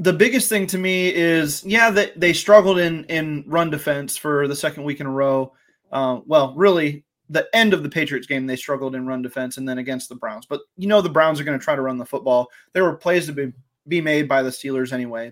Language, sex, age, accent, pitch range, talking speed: English, male, 20-39, American, 145-180 Hz, 250 wpm